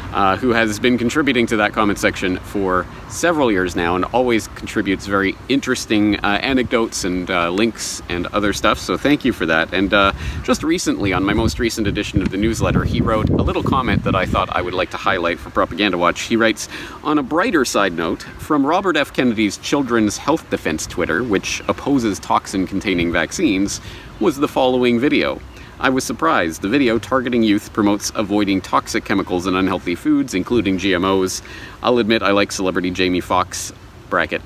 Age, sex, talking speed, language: 40-59, male, 185 wpm, English